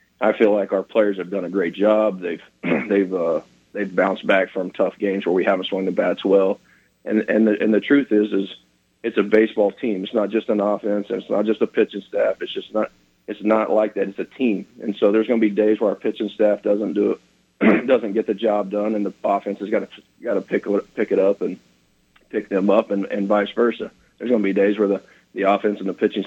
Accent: American